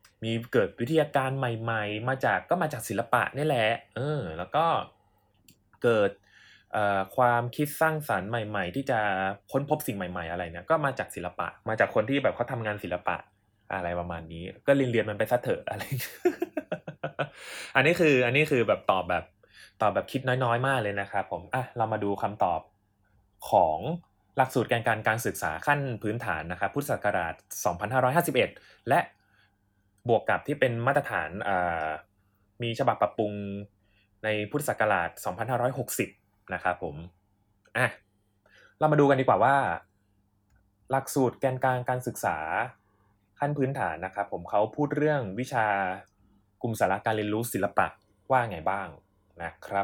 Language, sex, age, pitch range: Thai, male, 20-39, 100-130 Hz